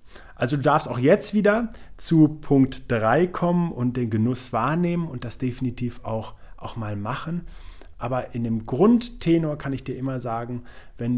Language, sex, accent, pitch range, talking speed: German, male, German, 115-145 Hz, 165 wpm